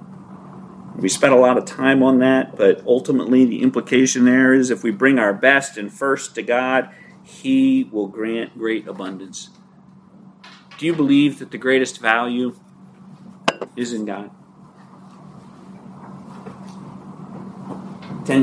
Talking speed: 125 wpm